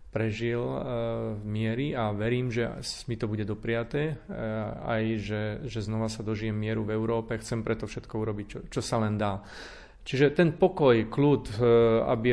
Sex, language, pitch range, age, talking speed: male, Slovak, 110-125 Hz, 40-59, 160 wpm